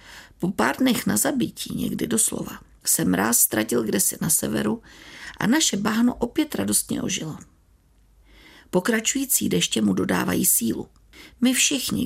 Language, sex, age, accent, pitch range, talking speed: Czech, female, 50-69, native, 190-265 Hz, 130 wpm